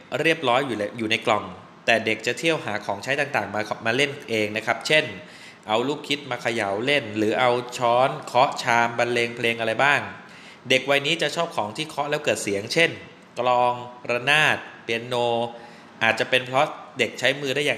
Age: 20-39